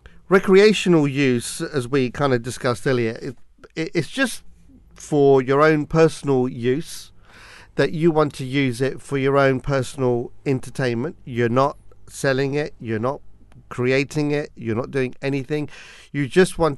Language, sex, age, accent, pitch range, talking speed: English, male, 50-69, British, 125-150 Hz, 155 wpm